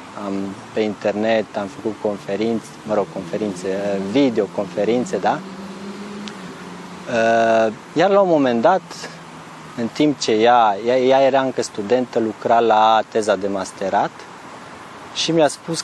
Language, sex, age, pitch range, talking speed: Romanian, male, 20-39, 105-130 Hz, 125 wpm